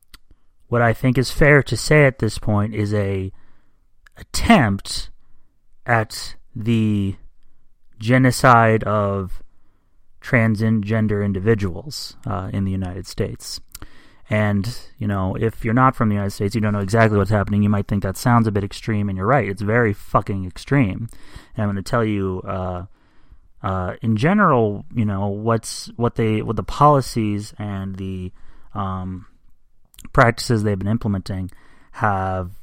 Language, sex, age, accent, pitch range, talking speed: English, male, 30-49, American, 95-115 Hz, 150 wpm